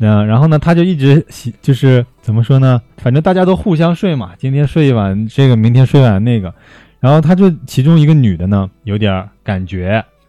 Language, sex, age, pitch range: Chinese, male, 20-39, 100-140 Hz